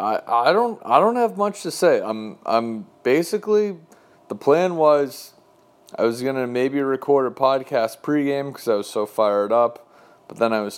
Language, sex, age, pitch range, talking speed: English, male, 30-49, 115-165 Hz, 185 wpm